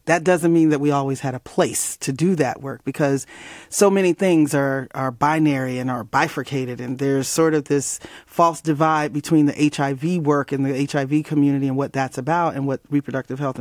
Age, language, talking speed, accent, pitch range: 40-59, English, 205 wpm, American, 140-170 Hz